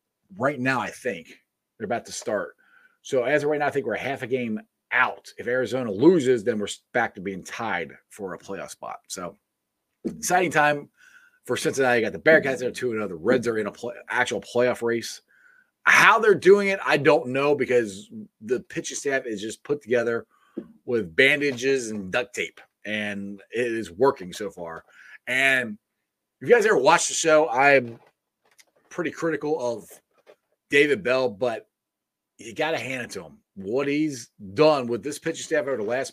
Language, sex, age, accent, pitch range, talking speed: English, male, 30-49, American, 120-165 Hz, 190 wpm